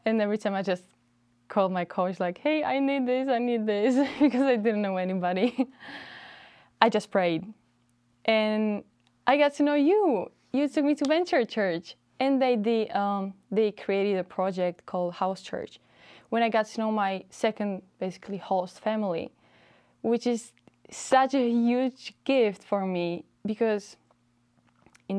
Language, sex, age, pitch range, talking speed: English, female, 20-39, 180-220 Hz, 160 wpm